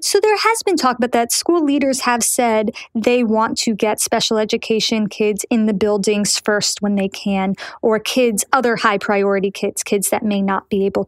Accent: American